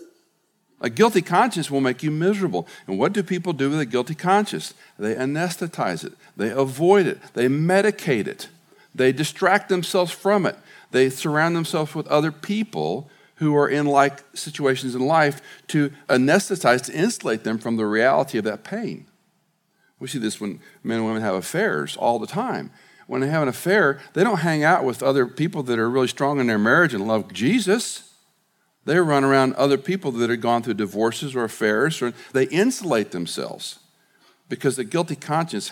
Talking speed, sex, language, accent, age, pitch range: 180 wpm, male, English, American, 50-69, 120-170 Hz